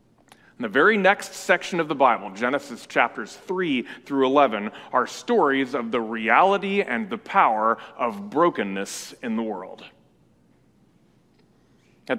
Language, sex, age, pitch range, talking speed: English, male, 30-49, 130-185 Hz, 135 wpm